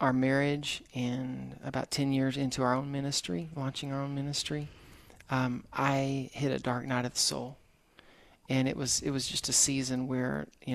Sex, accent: male, American